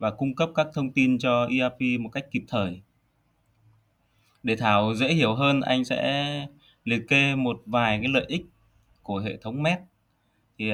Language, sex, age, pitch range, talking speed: Vietnamese, male, 20-39, 110-150 Hz, 175 wpm